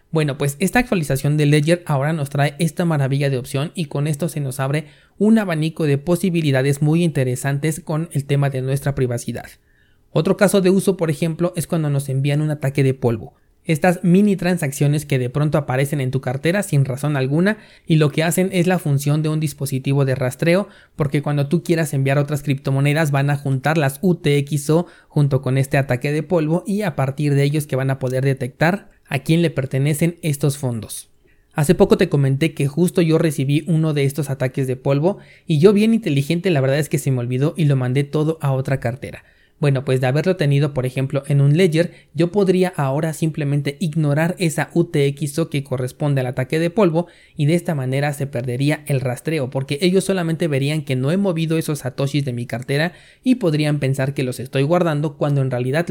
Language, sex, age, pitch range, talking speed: Spanish, male, 30-49, 135-170 Hz, 205 wpm